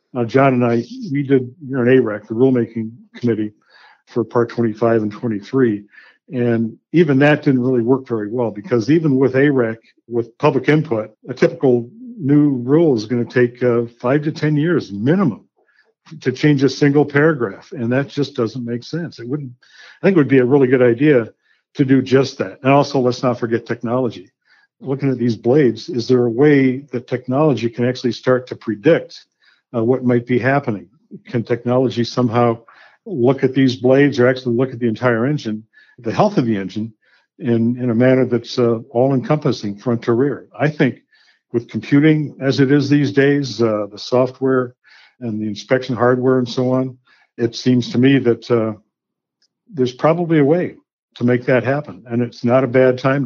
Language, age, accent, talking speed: English, 60-79, American, 185 wpm